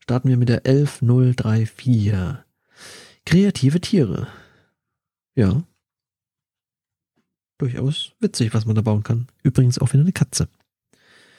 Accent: German